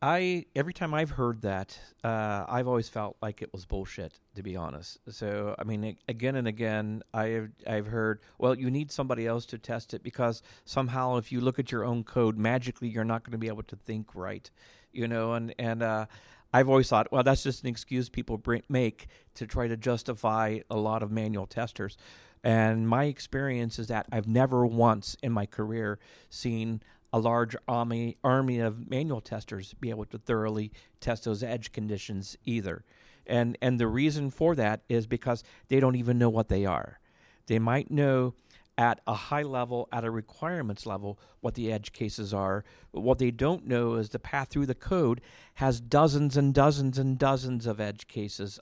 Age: 40-59